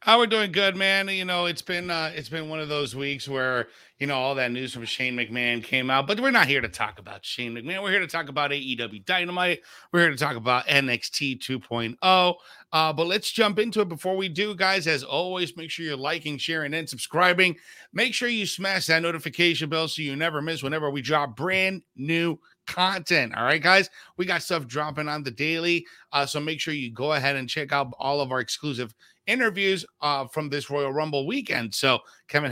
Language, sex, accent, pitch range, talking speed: English, male, American, 140-180 Hz, 220 wpm